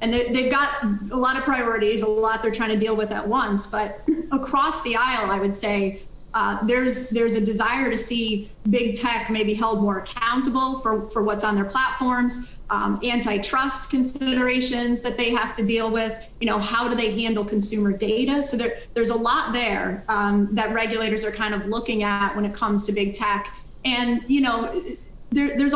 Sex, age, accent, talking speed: female, 30-49, American, 195 wpm